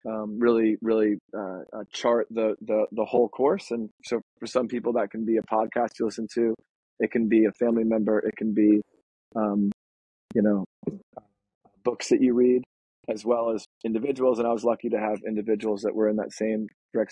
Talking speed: 200 wpm